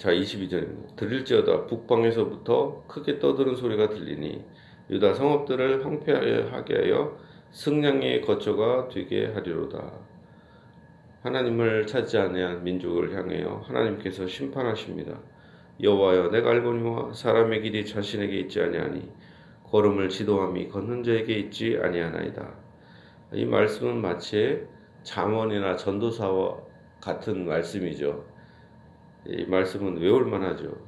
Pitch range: 95-135 Hz